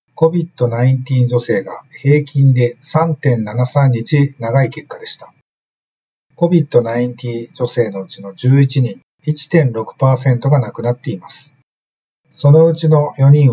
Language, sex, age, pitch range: Japanese, male, 50-69, 125-150 Hz